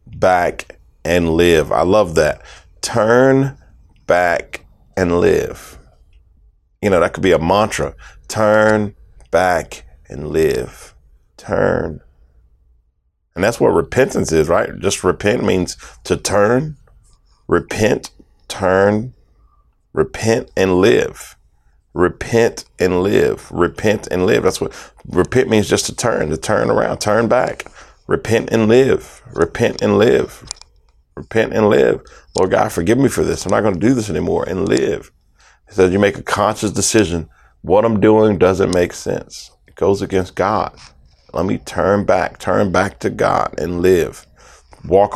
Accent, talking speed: American, 145 wpm